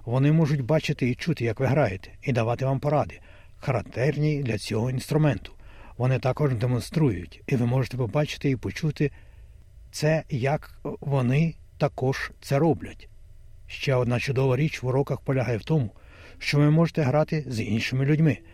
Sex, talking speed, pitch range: male, 150 wpm, 110-150 Hz